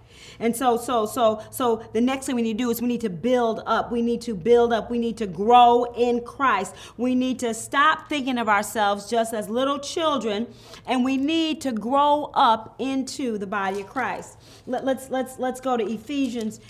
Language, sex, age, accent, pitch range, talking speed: English, female, 40-59, American, 200-250 Hz, 205 wpm